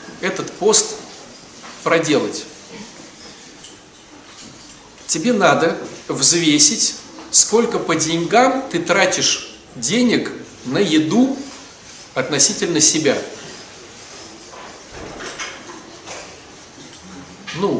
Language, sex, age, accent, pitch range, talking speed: Russian, male, 40-59, native, 165-255 Hz, 55 wpm